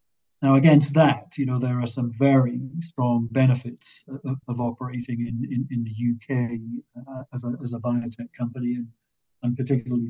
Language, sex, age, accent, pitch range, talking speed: English, male, 50-69, British, 120-130 Hz, 170 wpm